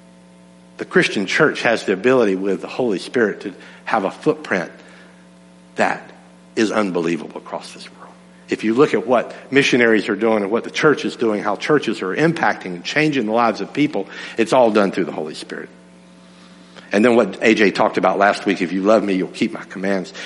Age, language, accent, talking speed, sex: 60-79, English, American, 200 wpm, male